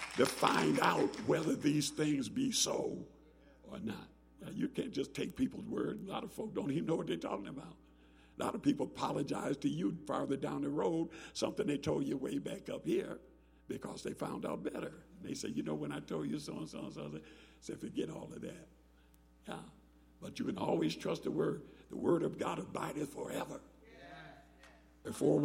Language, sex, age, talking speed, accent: English, male, 60-79, 205 wpm, American